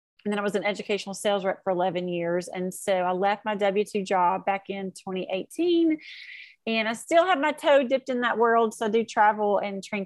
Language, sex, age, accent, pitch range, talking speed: English, female, 30-49, American, 195-245 Hz, 220 wpm